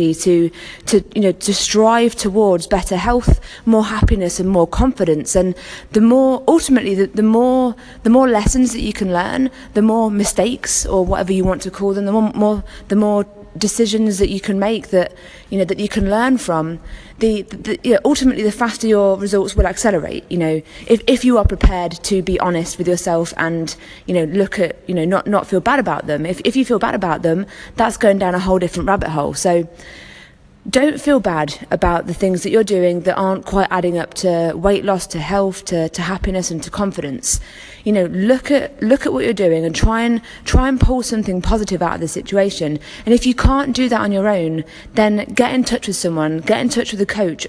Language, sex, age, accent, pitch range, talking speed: English, female, 20-39, British, 180-225 Hz, 220 wpm